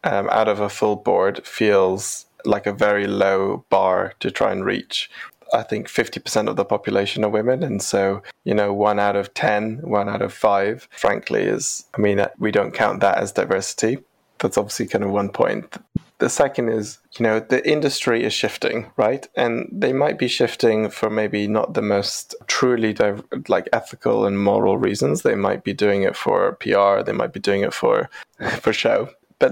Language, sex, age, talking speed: English, male, 20-39, 190 wpm